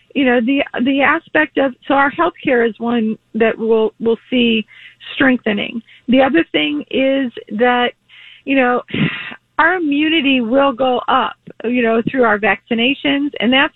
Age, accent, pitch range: 40-59, American, 220-275 Hz